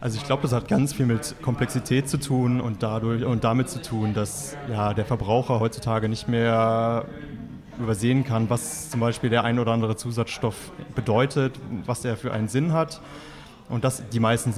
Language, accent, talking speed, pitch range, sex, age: German, German, 185 wpm, 105-125 Hz, male, 30-49